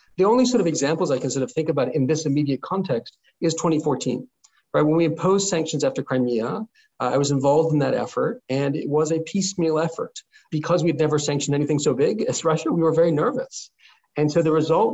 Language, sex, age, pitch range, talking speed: English, male, 40-59, 140-180 Hz, 215 wpm